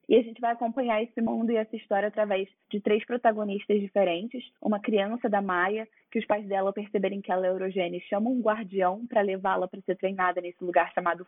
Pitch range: 190-220 Hz